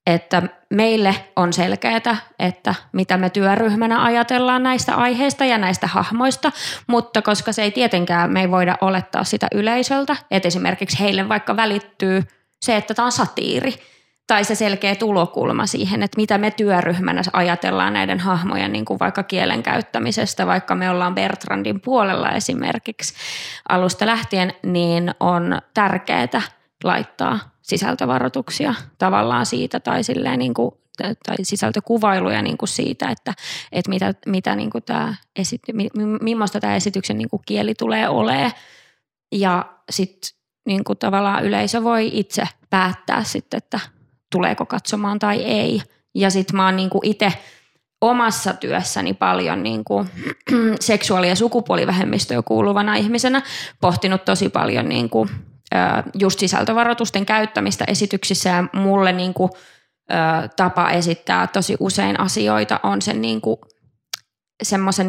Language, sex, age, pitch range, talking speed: Finnish, female, 20-39, 175-220 Hz, 130 wpm